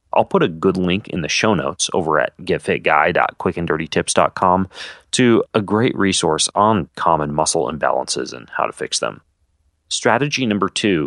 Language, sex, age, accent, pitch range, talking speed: English, male, 30-49, American, 80-100 Hz, 150 wpm